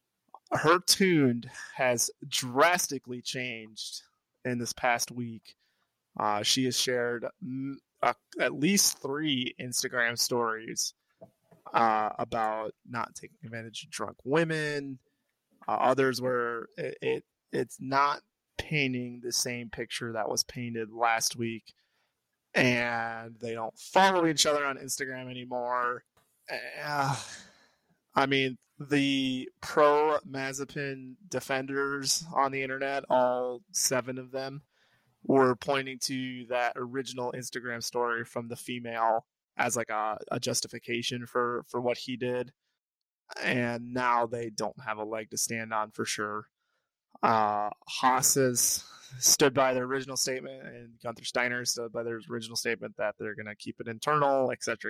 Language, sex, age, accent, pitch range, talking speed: English, male, 20-39, American, 115-135 Hz, 135 wpm